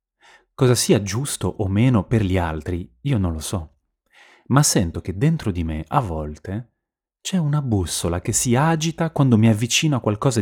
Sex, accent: male, native